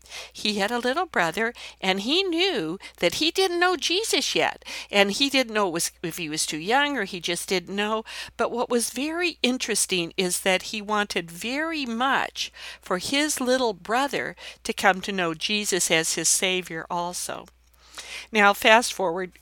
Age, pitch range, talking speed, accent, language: 50-69, 175-240 Hz, 170 wpm, American, English